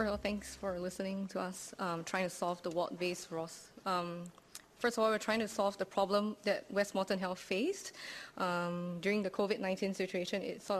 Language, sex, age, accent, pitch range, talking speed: English, female, 20-39, Malaysian, 185-215 Hz, 190 wpm